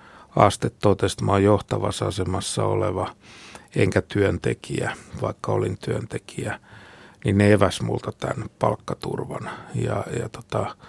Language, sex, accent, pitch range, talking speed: Finnish, male, native, 90-105 Hz, 110 wpm